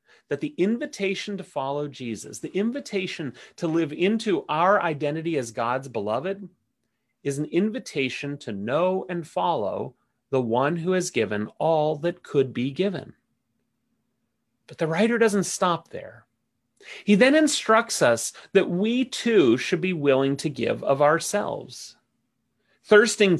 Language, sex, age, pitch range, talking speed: English, male, 30-49, 130-180 Hz, 140 wpm